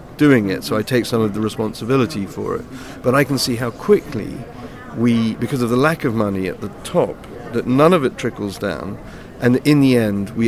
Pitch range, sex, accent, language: 105-120 Hz, male, British, English